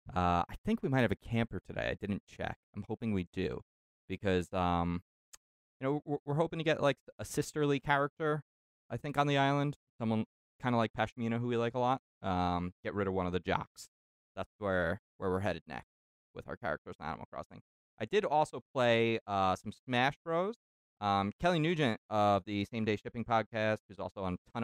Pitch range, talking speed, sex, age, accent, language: 90-120 Hz, 210 wpm, male, 20-39, American, English